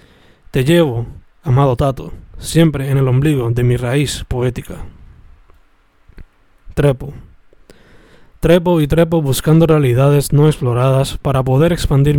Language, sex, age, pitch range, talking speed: Spanish, male, 20-39, 125-155 Hz, 115 wpm